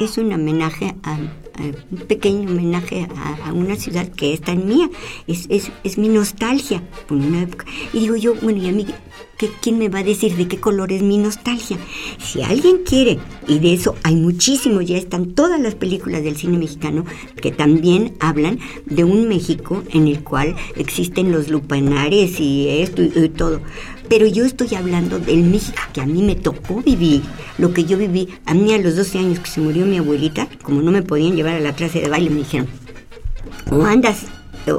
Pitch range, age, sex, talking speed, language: 155-200 Hz, 50-69, male, 200 wpm, Spanish